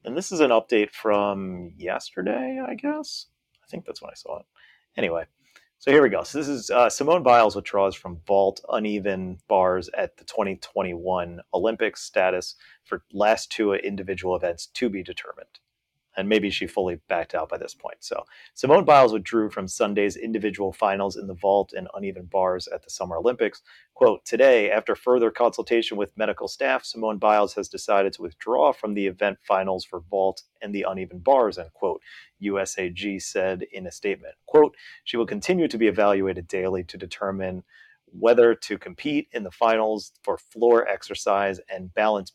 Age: 30-49